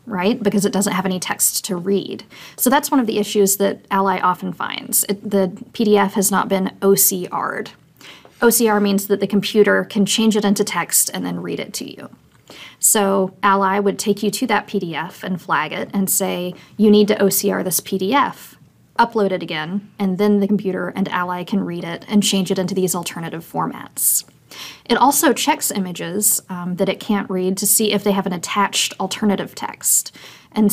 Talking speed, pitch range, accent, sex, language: 195 wpm, 185-210 Hz, American, female, English